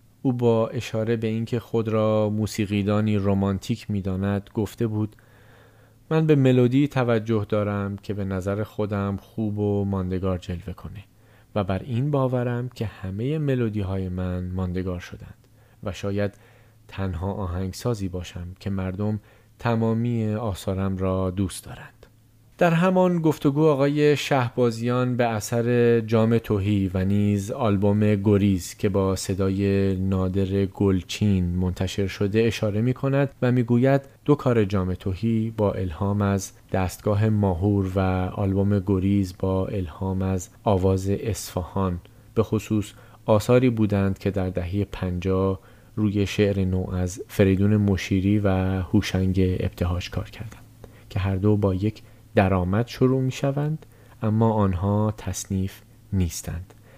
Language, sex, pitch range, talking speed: Persian, male, 95-115 Hz, 130 wpm